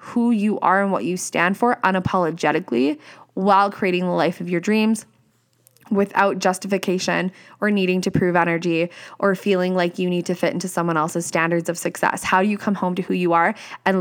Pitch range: 175-205 Hz